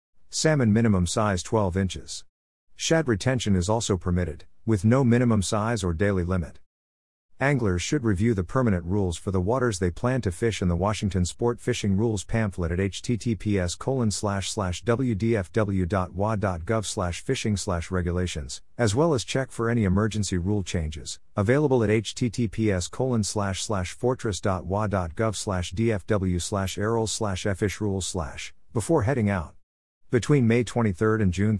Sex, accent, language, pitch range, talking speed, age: male, American, English, 90-115 Hz, 145 wpm, 50-69